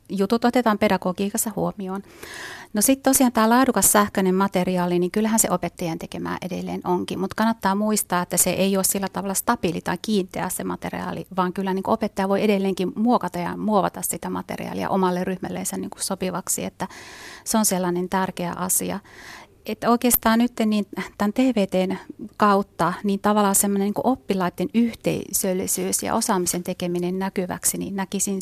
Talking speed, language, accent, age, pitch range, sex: 150 wpm, Finnish, native, 30-49, 180-205 Hz, female